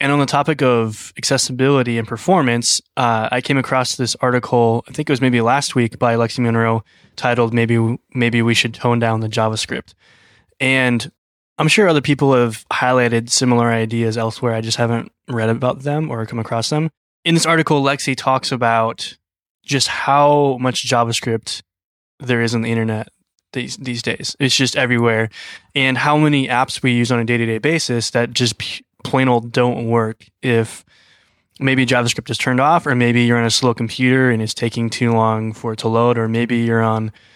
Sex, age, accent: male, 20-39, American